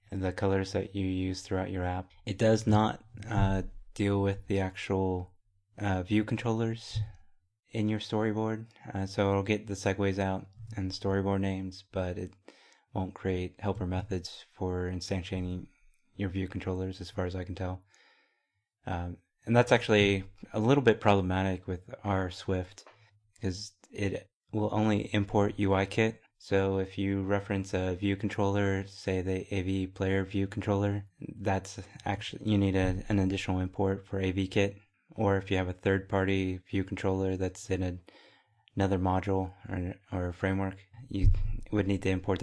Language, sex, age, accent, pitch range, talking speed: English, male, 30-49, American, 95-100 Hz, 160 wpm